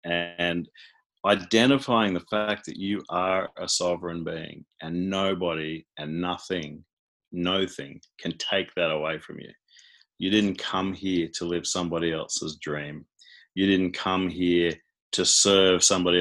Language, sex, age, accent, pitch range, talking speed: English, male, 30-49, Australian, 85-95 Hz, 135 wpm